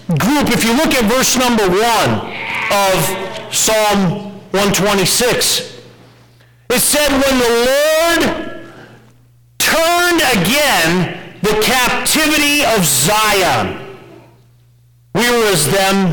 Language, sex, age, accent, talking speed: English, male, 50-69, American, 95 wpm